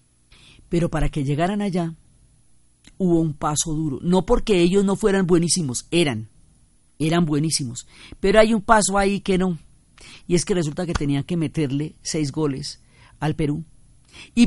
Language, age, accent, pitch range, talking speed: Spanish, 40-59, Colombian, 135-180 Hz, 160 wpm